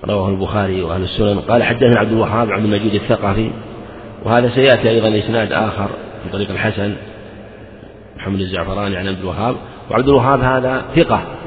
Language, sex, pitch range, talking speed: Arabic, male, 105-125 Hz, 145 wpm